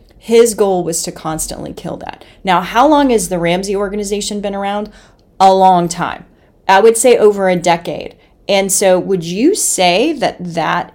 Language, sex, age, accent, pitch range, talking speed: English, female, 30-49, American, 170-230 Hz, 175 wpm